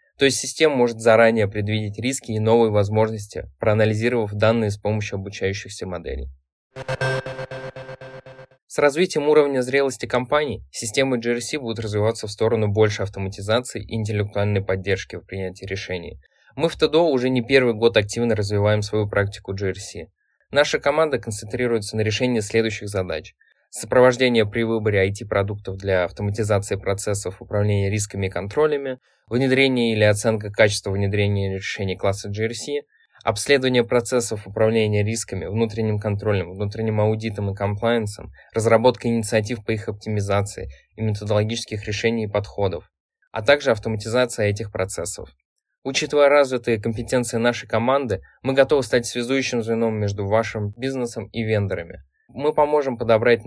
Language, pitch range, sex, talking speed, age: Russian, 105-120 Hz, male, 130 wpm, 20-39